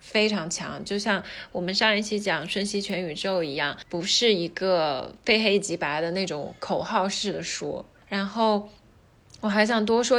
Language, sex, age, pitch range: Chinese, female, 20-39, 180-215 Hz